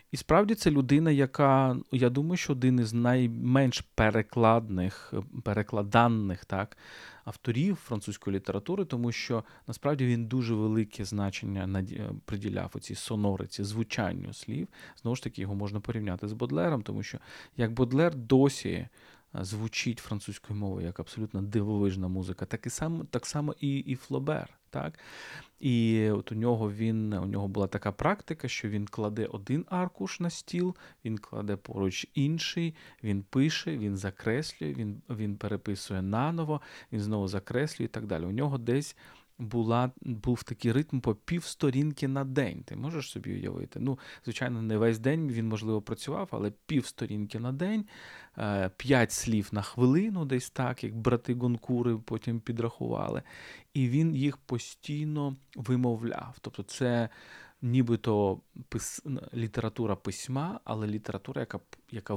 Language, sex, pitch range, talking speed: Ukrainian, male, 105-135 Hz, 140 wpm